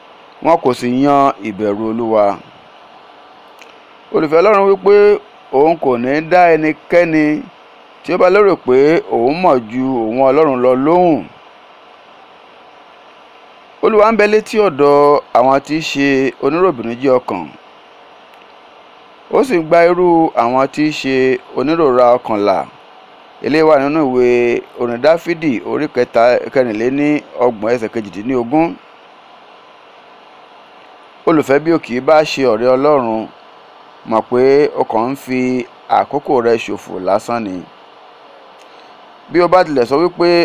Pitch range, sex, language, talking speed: 125-165 Hz, male, English, 120 wpm